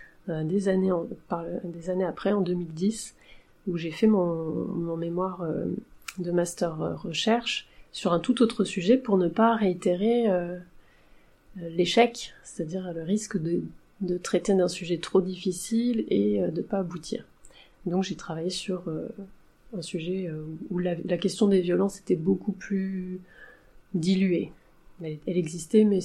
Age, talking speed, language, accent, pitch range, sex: 30-49, 145 wpm, French, French, 175-210 Hz, female